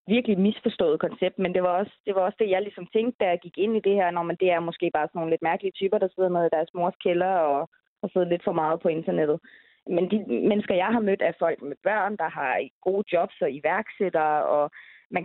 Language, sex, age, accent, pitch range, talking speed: Danish, female, 20-39, native, 170-205 Hz, 240 wpm